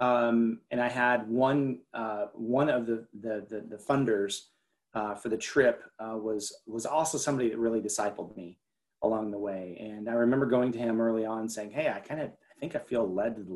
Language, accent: English, American